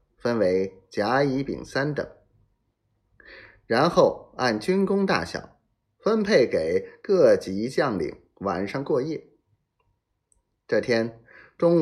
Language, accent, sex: Chinese, native, male